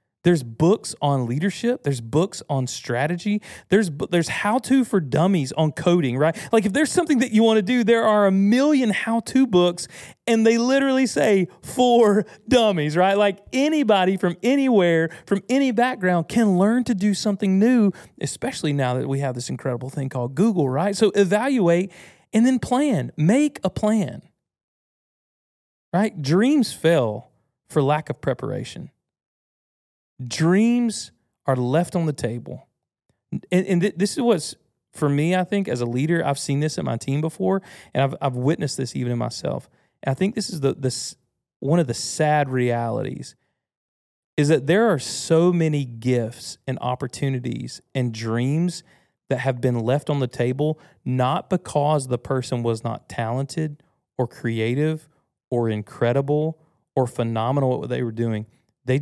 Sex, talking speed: male, 165 wpm